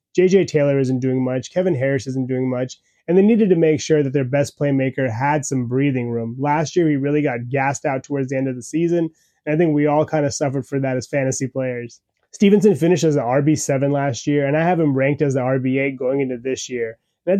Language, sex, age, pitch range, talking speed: English, male, 20-39, 130-165 Hz, 245 wpm